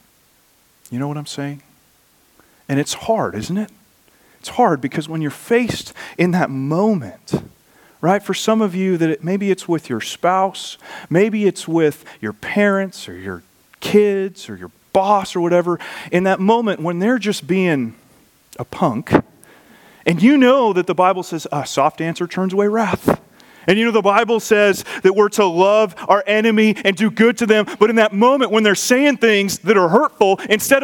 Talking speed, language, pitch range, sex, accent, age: 185 wpm, English, 175-240 Hz, male, American, 40-59